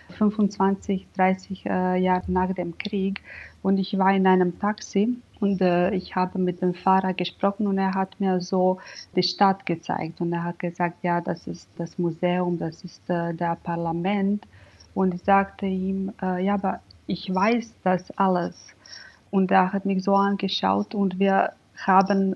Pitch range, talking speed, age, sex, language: 180-200 Hz, 170 wpm, 30-49, female, German